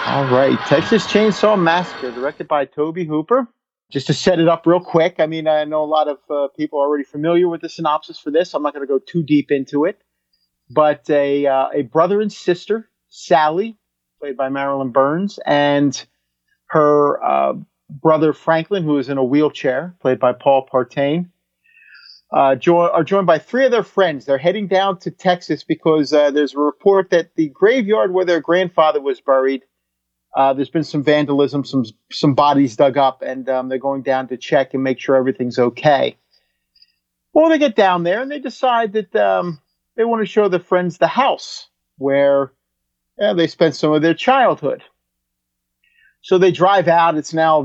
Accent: American